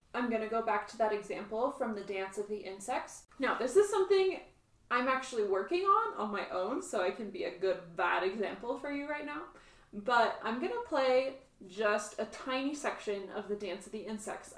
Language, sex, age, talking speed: English, female, 20-39, 215 wpm